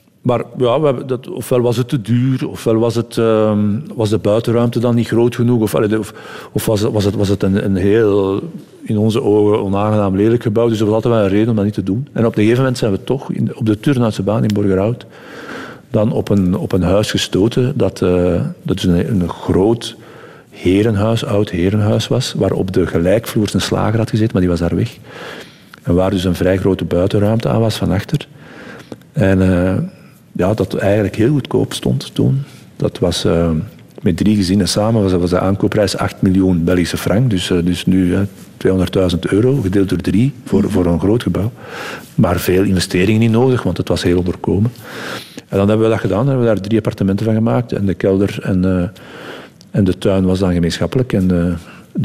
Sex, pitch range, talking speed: male, 95-115 Hz, 210 wpm